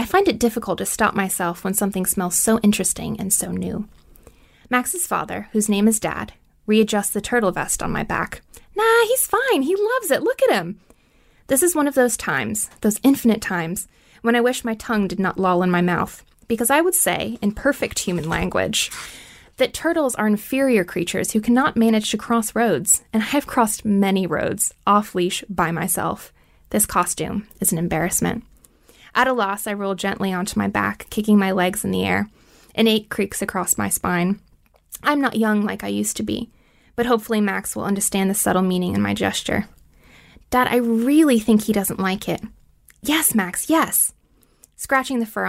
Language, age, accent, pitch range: English, 20-39, American, 185-235 Hz